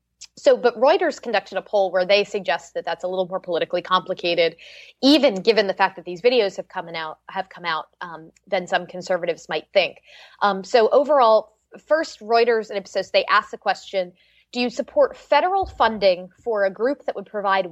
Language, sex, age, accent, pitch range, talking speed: English, female, 20-39, American, 185-240 Hz, 190 wpm